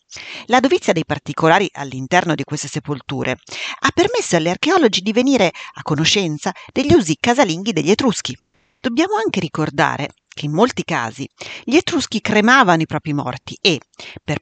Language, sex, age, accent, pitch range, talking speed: Italian, female, 40-59, native, 150-230 Hz, 150 wpm